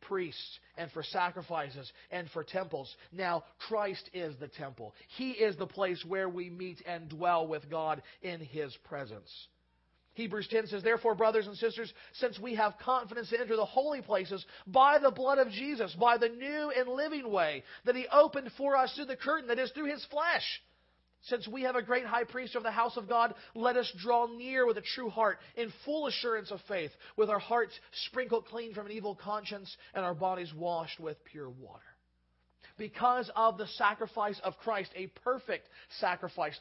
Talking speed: 190 wpm